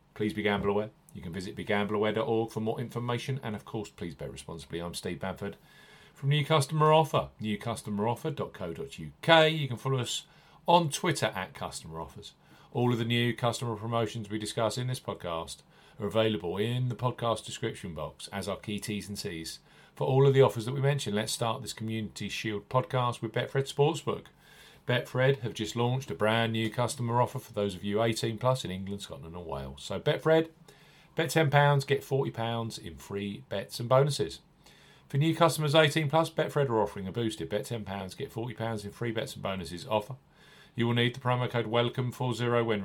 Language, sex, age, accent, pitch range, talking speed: English, male, 40-59, British, 105-135 Hz, 185 wpm